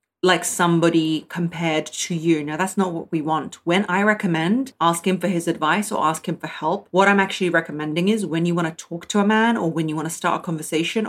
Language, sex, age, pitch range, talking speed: English, female, 30-49, 160-195 Hz, 245 wpm